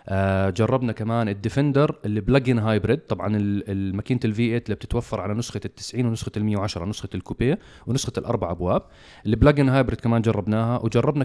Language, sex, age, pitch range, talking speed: Arabic, male, 30-49, 105-125 Hz, 155 wpm